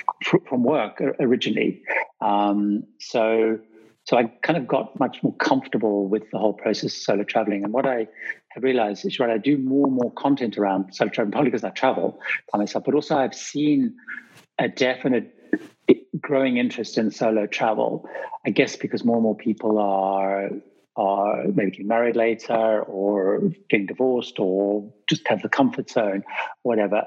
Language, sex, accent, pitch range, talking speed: English, male, British, 110-140 Hz, 170 wpm